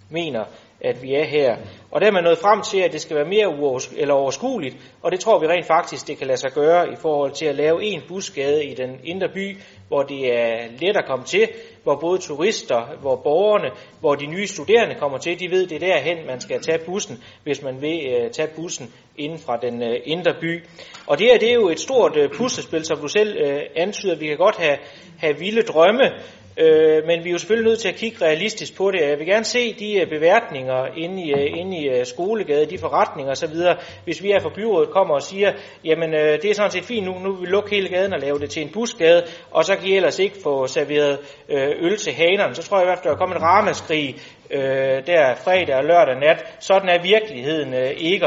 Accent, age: native, 30-49